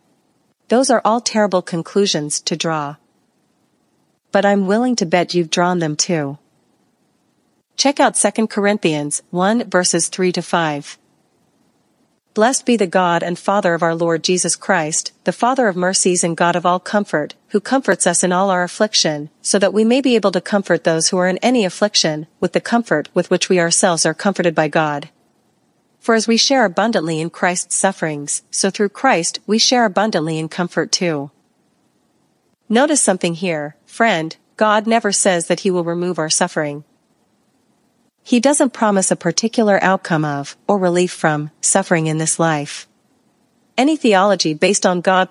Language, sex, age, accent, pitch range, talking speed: English, female, 40-59, American, 170-210 Hz, 165 wpm